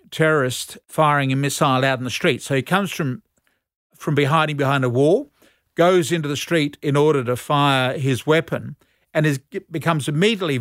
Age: 50-69